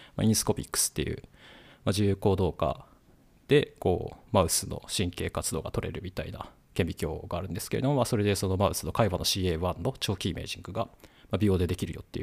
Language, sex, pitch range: Japanese, male, 95-125 Hz